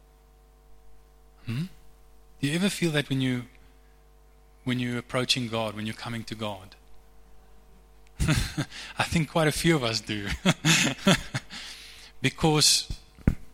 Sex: male